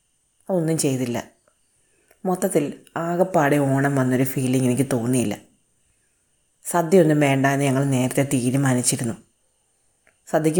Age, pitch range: 30-49, 135-155 Hz